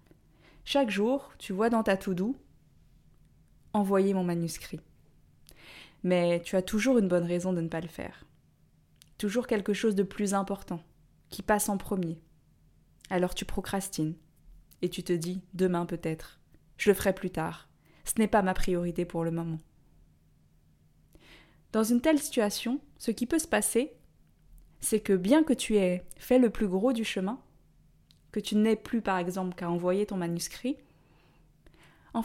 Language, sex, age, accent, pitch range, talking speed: French, female, 20-39, French, 180-235 Hz, 160 wpm